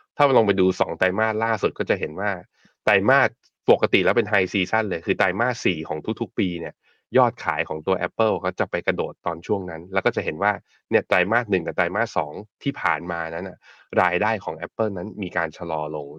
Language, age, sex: Thai, 20-39, male